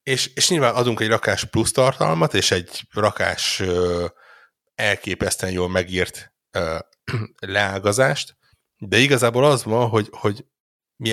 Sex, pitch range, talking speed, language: male, 95-125 Hz, 125 wpm, Hungarian